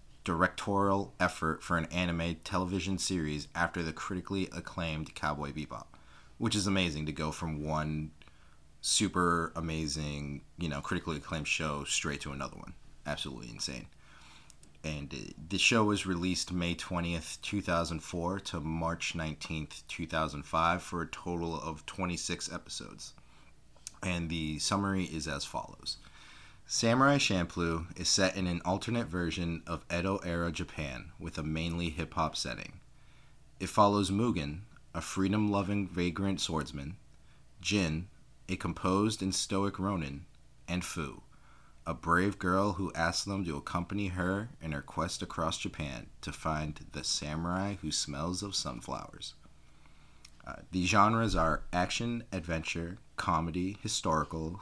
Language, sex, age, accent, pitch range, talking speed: English, male, 30-49, American, 80-95 Hz, 130 wpm